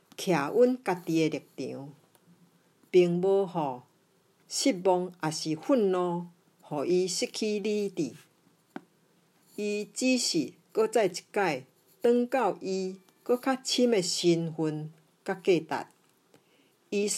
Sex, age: female, 50-69